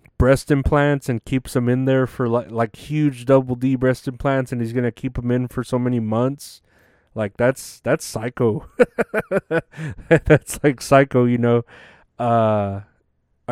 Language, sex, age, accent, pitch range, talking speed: English, male, 30-49, American, 115-140 Hz, 155 wpm